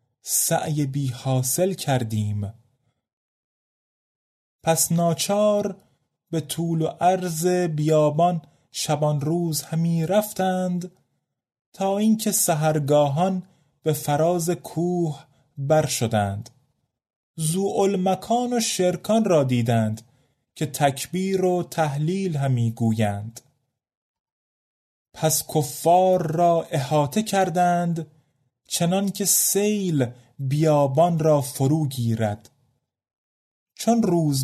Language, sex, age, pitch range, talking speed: Persian, male, 30-49, 135-180 Hz, 85 wpm